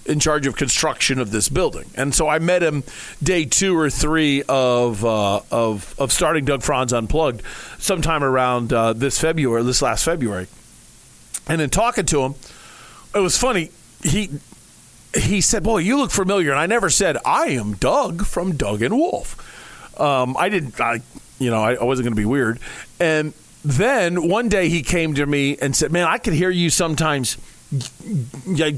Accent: American